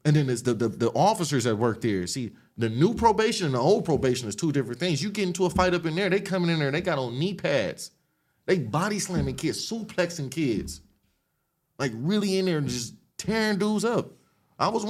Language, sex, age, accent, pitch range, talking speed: English, male, 30-49, American, 115-170 Hz, 225 wpm